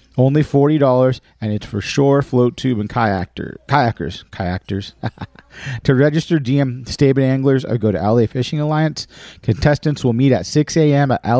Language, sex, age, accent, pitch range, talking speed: English, male, 40-59, American, 110-140 Hz, 165 wpm